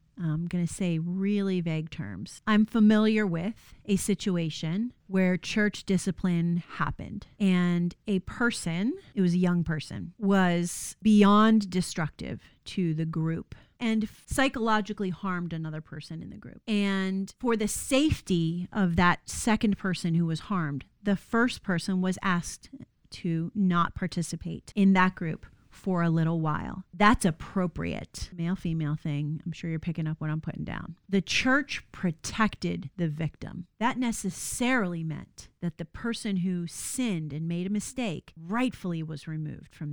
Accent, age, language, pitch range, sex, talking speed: American, 30-49, English, 165-205 Hz, female, 145 wpm